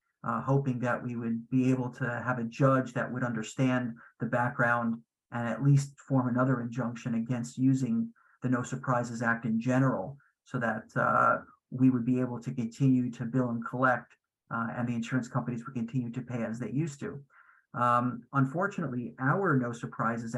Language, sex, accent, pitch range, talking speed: English, male, American, 120-140 Hz, 180 wpm